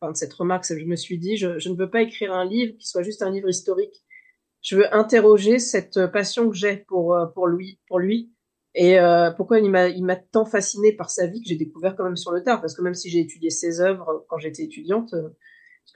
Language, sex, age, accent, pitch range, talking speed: French, female, 30-49, French, 170-215 Hz, 245 wpm